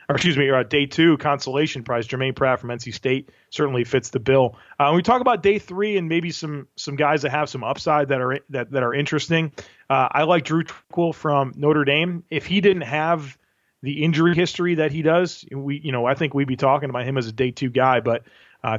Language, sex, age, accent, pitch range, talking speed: English, male, 30-49, American, 130-155 Hz, 235 wpm